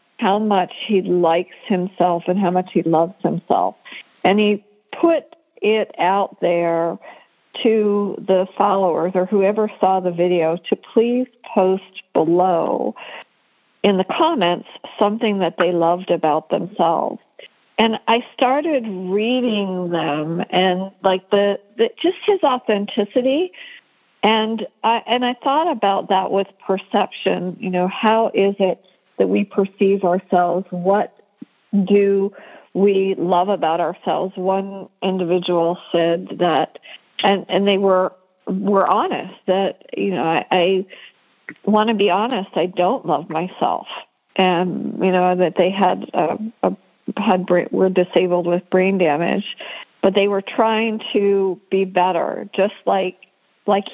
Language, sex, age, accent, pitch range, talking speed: English, female, 60-79, American, 180-220 Hz, 135 wpm